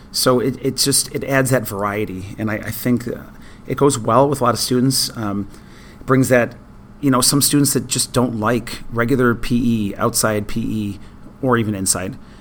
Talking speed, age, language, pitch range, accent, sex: 185 wpm, 30-49, English, 110-130 Hz, American, male